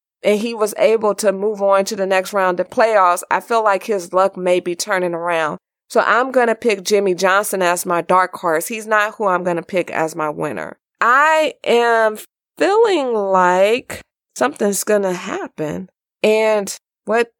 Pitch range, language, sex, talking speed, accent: 175-220 Hz, English, female, 185 wpm, American